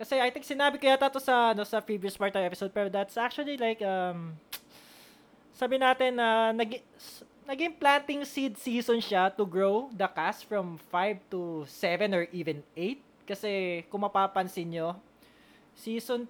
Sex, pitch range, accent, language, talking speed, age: male, 185-240 Hz, Filipino, English, 160 wpm, 20-39